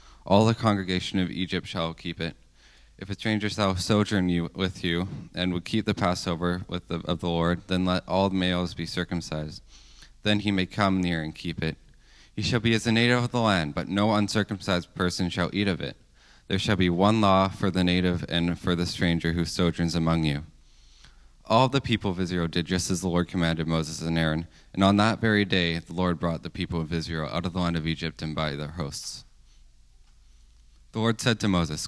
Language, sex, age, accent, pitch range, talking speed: English, male, 20-39, American, 85-100 Hz, 215 wpm